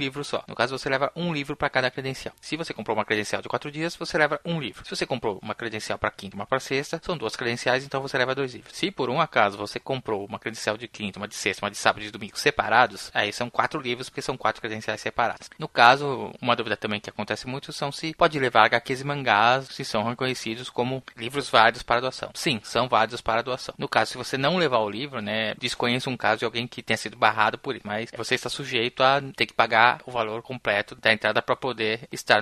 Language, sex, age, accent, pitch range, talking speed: Portuguese, male, 20-39, Brazilian, 110-135 Hz, 250 wpm